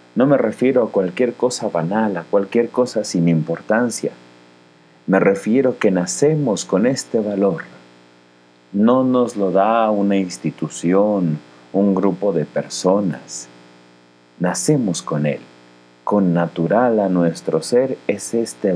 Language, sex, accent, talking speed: Spanish, male, Mexican, 125 wpm